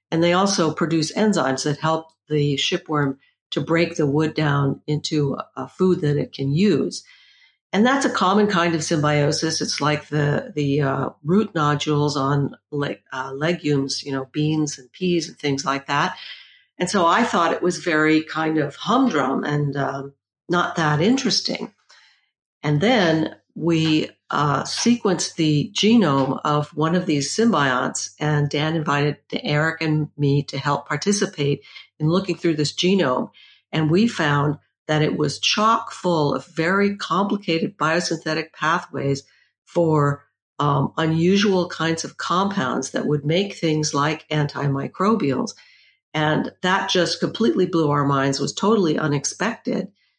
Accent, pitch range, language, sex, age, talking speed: American, 145-185 Hz, English, female, 60-79, 150 wpm